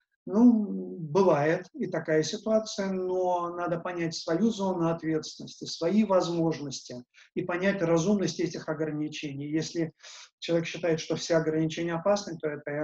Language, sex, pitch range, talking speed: English, male, 155-200 Hz, 130 wpm